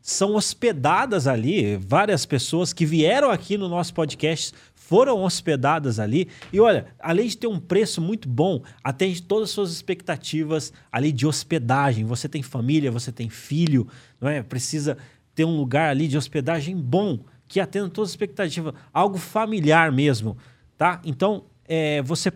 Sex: male